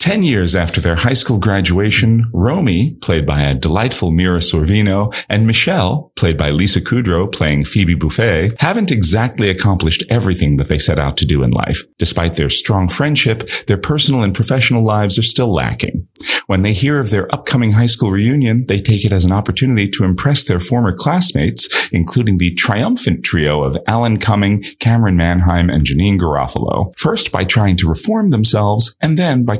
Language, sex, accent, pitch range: English, male, American, 80-115 Hz